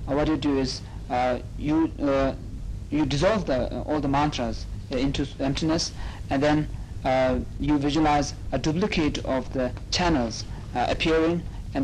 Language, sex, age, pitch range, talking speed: Italian, male, 50-69, 110-145 Hz, 150 wpm